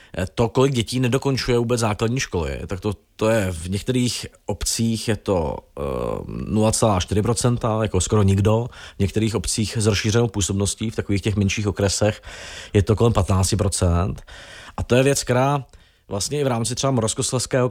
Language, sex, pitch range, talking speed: Czech, male, 100-120 Hz, 155 wpm